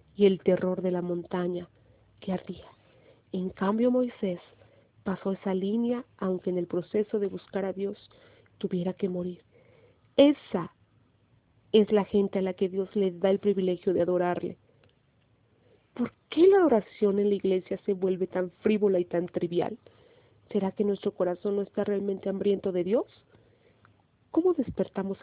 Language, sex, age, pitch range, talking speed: Spanish, female, 40-59, 180-210 Hz, 155 wpm